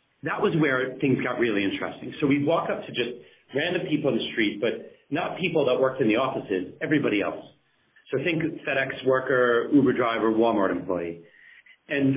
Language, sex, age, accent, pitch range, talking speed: English, male, 40-59, American, 120-165 Hz, 180 wpm